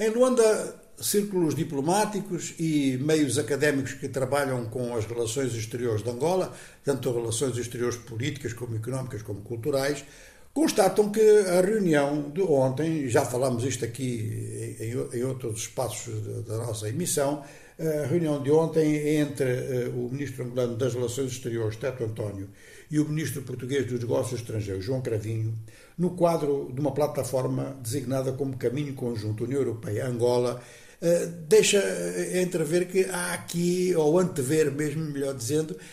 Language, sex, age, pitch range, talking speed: Portuguese, male, 60-79, 125-170 Hz, 135 wpm